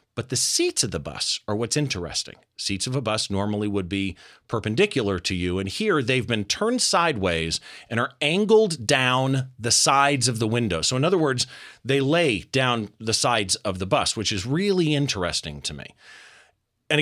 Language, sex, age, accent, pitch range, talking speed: English, male, 40-59, American, 105-155 Hz, 185 wpm